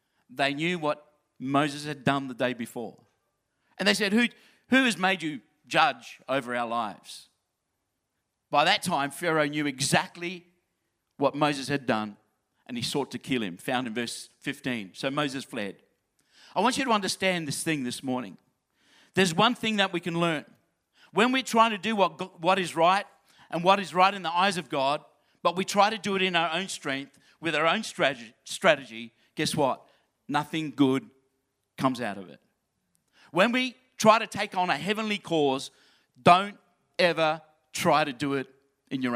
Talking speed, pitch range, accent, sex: 180 wpm, 135-195 Hz, Australian, male